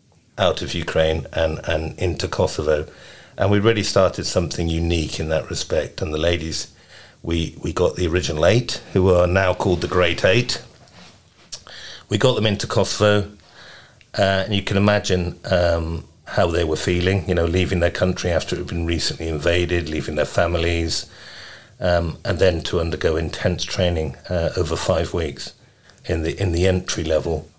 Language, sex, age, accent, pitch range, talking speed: English, male, 50-69, British, 80-95 Hz, 165 wpm